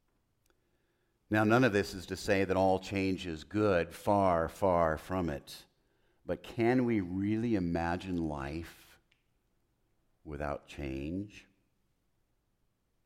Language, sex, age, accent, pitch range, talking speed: English, male, 50-69, American, 95-120 Hz, 110 wpm